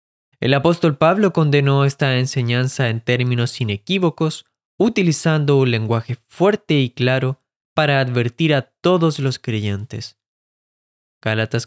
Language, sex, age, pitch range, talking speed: Spanish, male, 20-39, 110-145 Hz, 115 wpm